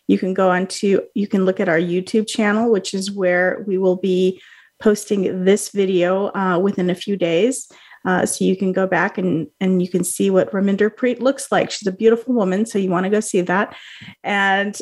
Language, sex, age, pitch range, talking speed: English, female, 30-49, 190-220 Hz, 220 wpm